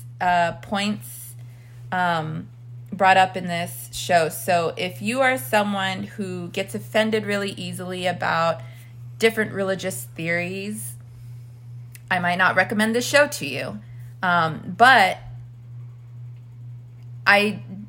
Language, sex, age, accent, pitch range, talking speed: English, female, 20-39, American, 120-195 Hz, 110 wpm